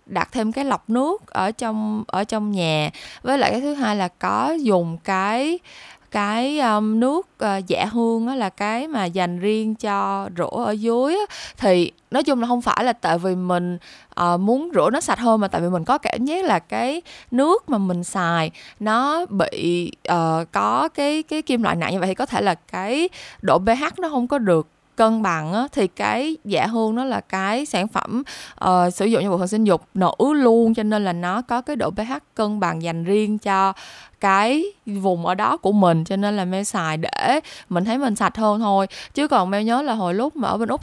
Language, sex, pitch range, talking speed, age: Vietnamese, female, 185-255 Hz, 220 wpm, 20-39